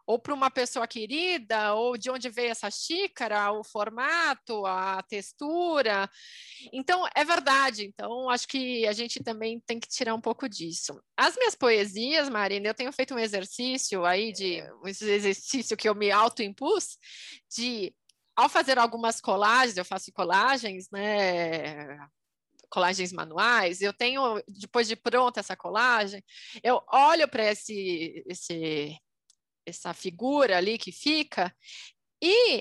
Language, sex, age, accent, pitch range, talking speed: Portuguese, female, 20-39, Brazilian, 215-290 Hz, 135 wpm